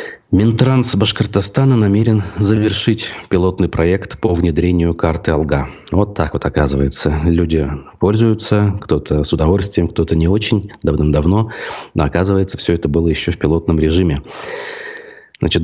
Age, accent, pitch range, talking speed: 30-49, native, 80-100 Hz, 125 wpm